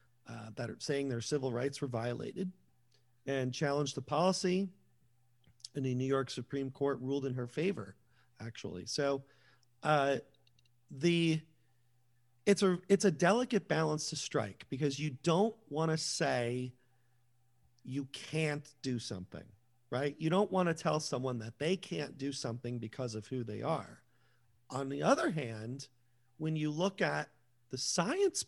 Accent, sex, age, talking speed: American, male, 40-59, 150 wpm